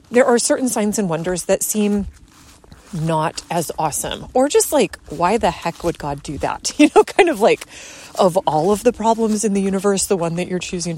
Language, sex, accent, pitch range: English, female, American, 170-230 Hz